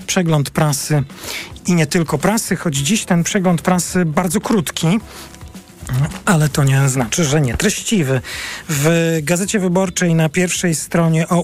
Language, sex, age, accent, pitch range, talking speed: Polish, male, 40-59, native, 155-185 Hz, 140 wpm